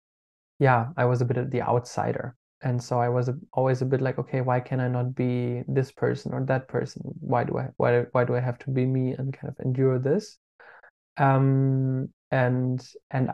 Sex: male